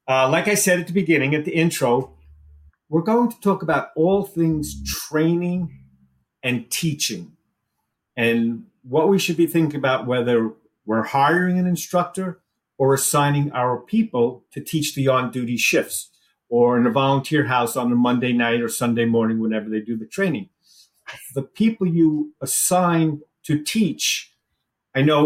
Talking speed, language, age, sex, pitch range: 155 wpm, English, 50-69, male, 120-160 Hz